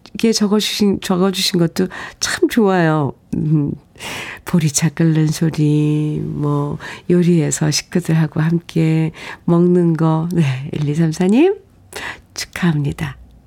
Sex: female